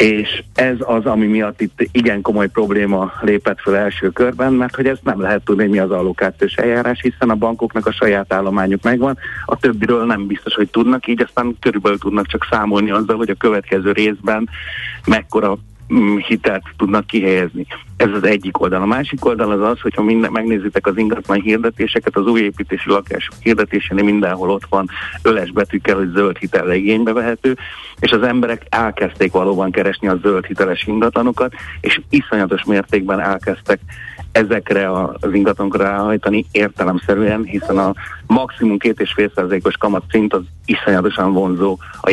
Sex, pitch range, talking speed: male, 95-115 Hz, 160 wpm